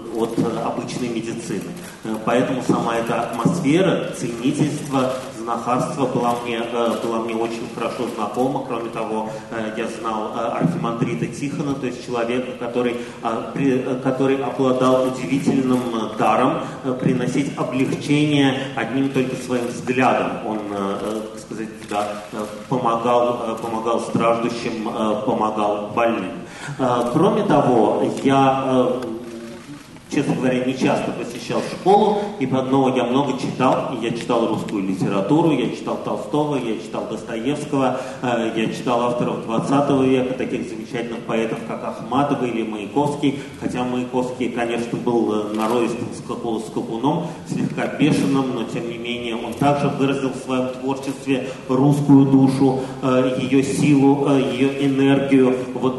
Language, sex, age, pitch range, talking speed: Russian, male, 30-49, 115-135 Hz, 115 wpm